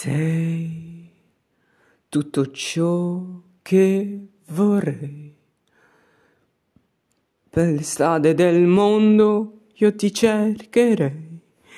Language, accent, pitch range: Italian, native, 165-240 Hz